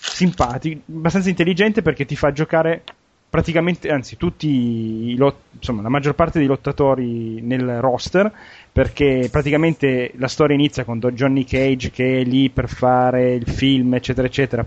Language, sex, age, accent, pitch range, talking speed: Italian, male, 30-49, native, 125-160 Hz, 150 wpm